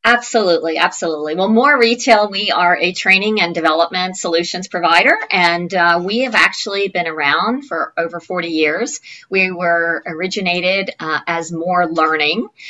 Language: English